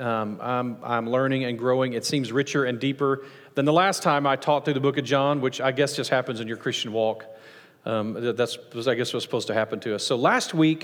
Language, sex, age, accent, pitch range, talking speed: English, male, 40-59, American, 135-180 Hz, 250 wpm